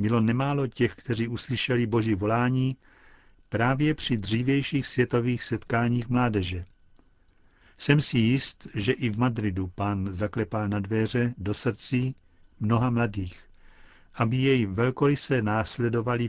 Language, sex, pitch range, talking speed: Czech, male, 105-125 Hz, 120 wpm